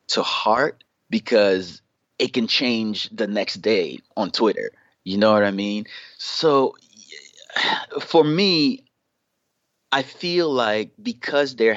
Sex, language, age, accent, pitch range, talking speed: male, English, 30-49, American, 100-130 Hz, 120 wpm